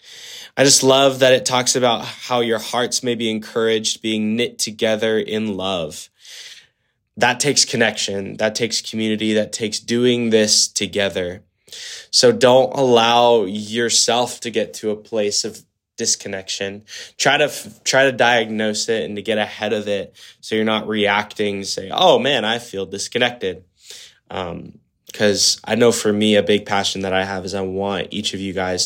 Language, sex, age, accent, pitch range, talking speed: English, male, 10-29, American, 100-115 Hz, 170 wpm